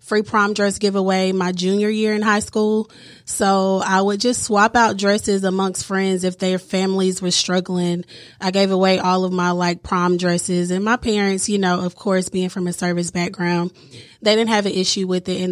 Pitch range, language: 180-205 Hz, English